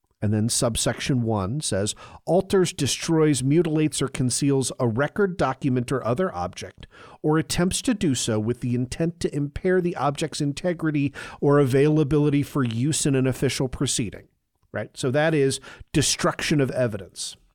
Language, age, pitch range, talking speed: English, 50-69, 120-170 Hz, 150 wpm